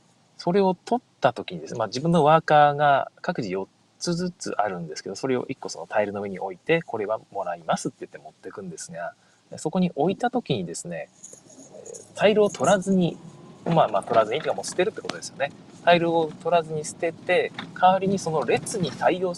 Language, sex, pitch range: Japanese, male, 165-230 Hz